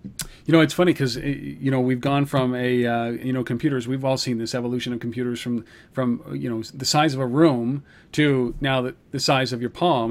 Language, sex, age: English, male, 40-59